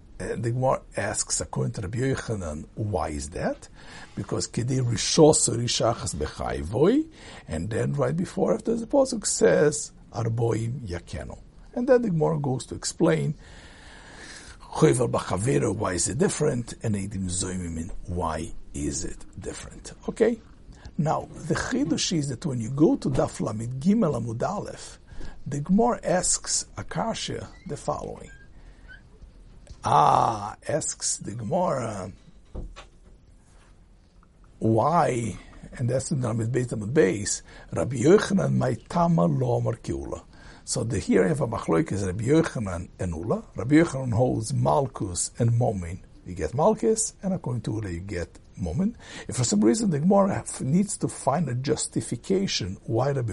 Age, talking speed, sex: 60-79, 130 wpm, male